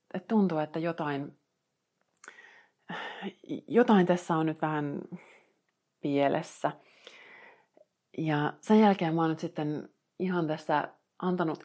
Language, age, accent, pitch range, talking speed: Finnish, 30-49, native, 155-190 Hz, 105 wpm